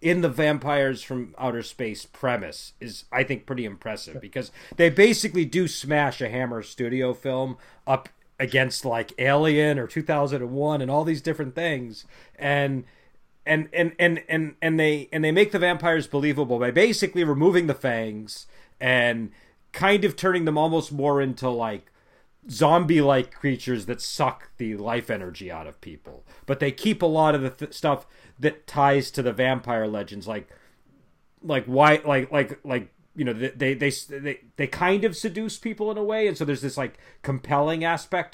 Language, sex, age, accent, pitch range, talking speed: English, male, 40-59, American, 125-160 Hz, 175 wpm